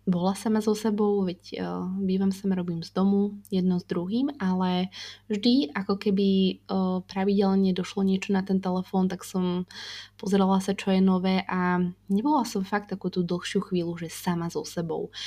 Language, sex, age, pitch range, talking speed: Slovak, female, 20-39, 175-195 Hz, 160 wpm